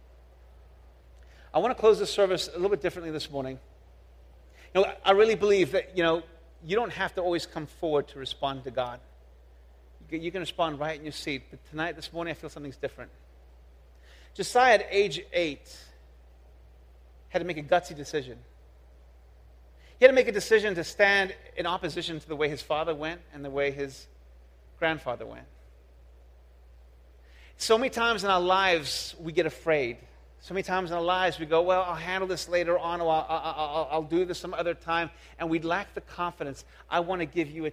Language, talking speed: English, 190 wpm